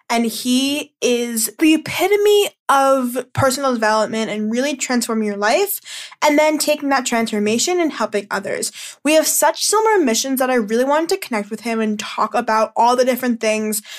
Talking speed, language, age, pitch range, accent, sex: 175 wpm, English, 10-29, 220-275 Hz, American, female